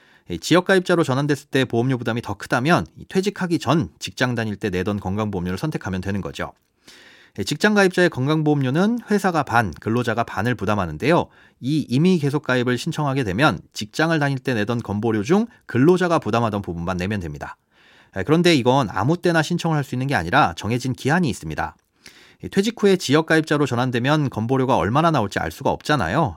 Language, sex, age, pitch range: Korean, male, 30-49, 105-155 Hz